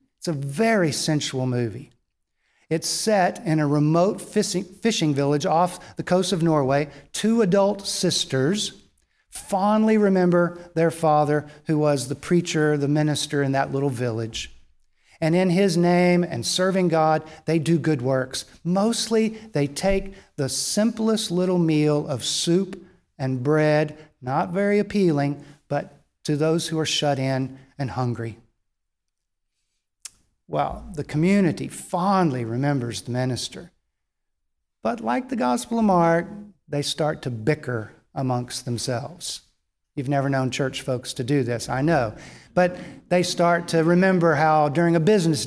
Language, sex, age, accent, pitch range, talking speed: English, male, 50-69, American, 135-180 Hz, 140 wpm